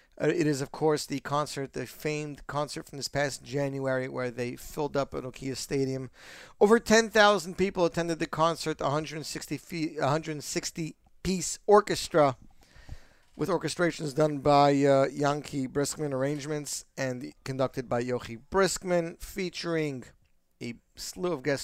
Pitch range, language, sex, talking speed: 130-160 Hz, English, male, 135 wpm